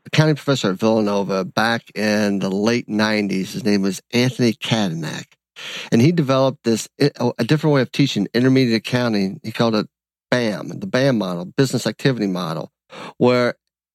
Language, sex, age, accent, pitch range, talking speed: English, male, 50-69, American, 115-150 Hz, 155 wpm